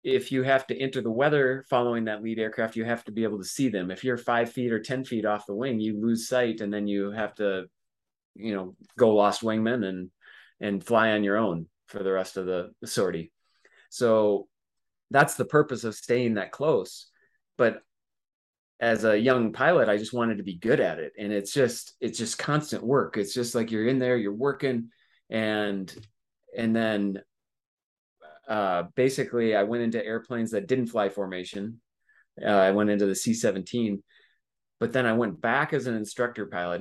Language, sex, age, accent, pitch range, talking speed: English, male, 30-49, American, 100-125 Hz, 190 wpm